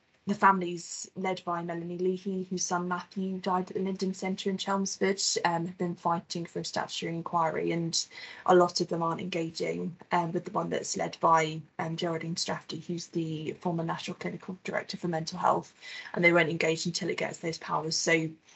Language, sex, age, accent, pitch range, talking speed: English, female, 20-39, British, 170-185 Hz, 195 wpm